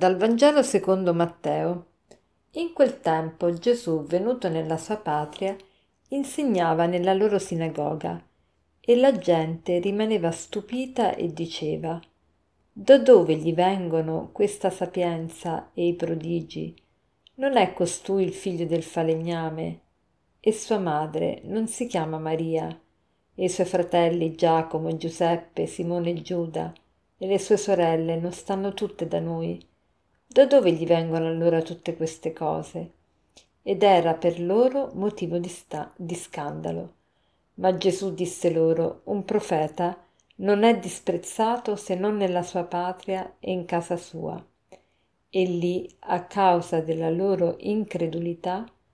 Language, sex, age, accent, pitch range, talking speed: Italian, female, 50-69, native, 160-195 Hz, 130 wpm